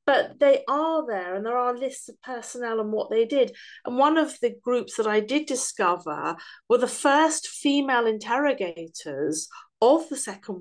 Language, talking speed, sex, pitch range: English, 175 wpm, female, 205-280 Hz